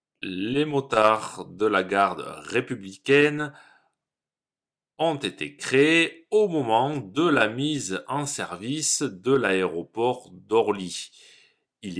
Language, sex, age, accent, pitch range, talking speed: French, male, 40-59, French, 95-140 Hz, 100 wpm